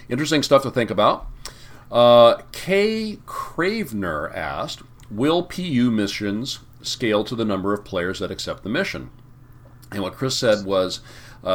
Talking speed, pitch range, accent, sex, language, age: 145 wpm, 90-120 Hz, American, male, English, 40-59